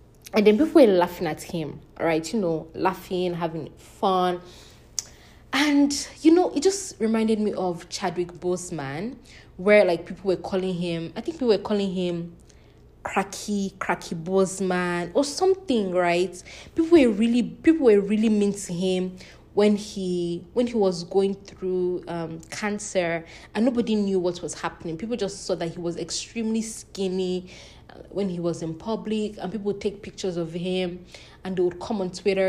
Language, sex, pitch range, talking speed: English, female, 175-215 Hz, 165 wpm